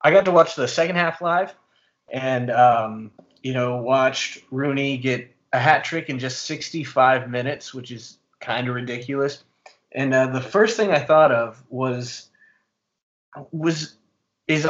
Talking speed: 155 wpm